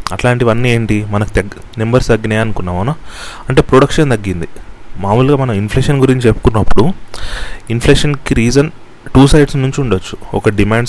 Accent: native